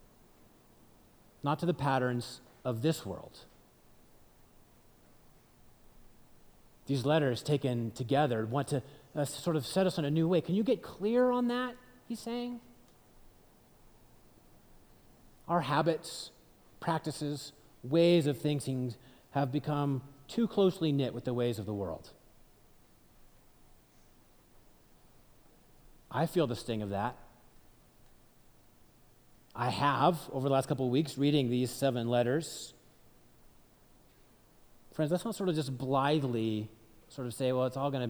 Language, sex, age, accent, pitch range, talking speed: English, male, 30-49, American, 120-155 Hz, 125 wpm